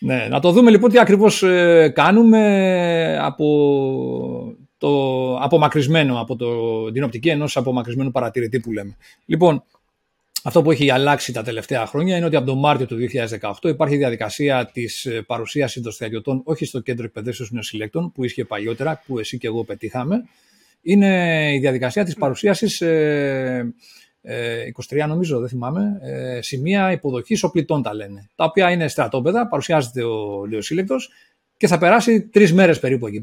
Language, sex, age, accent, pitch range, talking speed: Greek, male, 40-59, Spanish, 125-175 Hz, 155 wpm